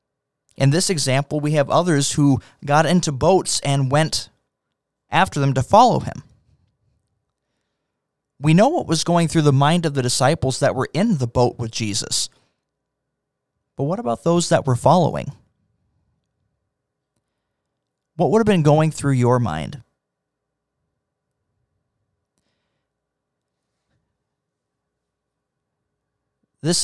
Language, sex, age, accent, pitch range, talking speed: English, male, 20-39, American, 120-150 Hz, 115 wpm